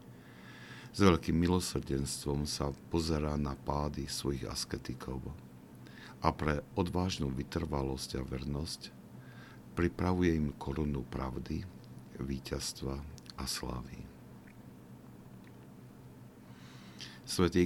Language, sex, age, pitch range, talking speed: Slovak, male, 60-79, 65-80 Hz, 80 wpm